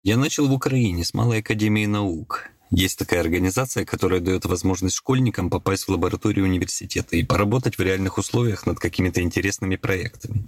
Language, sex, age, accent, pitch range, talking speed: Russian, male, 20-39, native, 95-115 Hz, 160 wpm